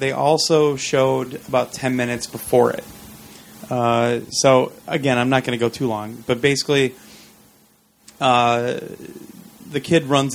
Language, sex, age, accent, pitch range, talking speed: English, male, 30-49, American, 115-135 Hz, 140 wpm